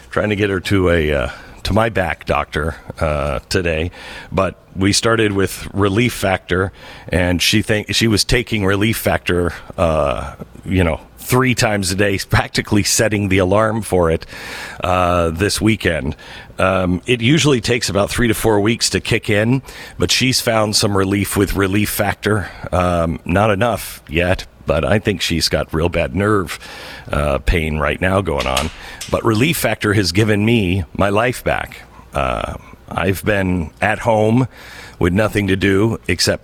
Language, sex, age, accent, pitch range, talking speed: English, male, 50-69, American, 90-110 Hz, 165 wpm